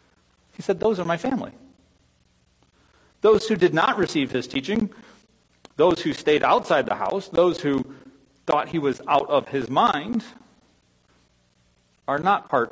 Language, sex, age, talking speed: English, male, 40-59, 145 wpm